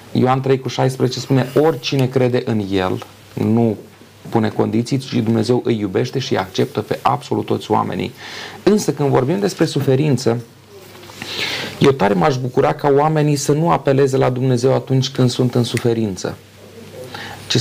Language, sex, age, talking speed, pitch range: Romanian, male, 30-49, 145 wpm, 120-150 Hz